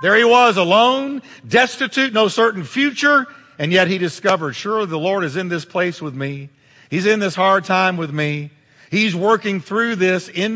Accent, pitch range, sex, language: American, 140-215 Hz, male, English